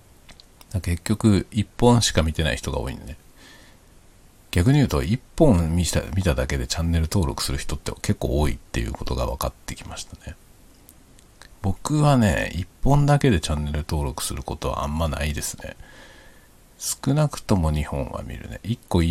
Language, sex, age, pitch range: Japanese, male, 50-69, 75-105 Hz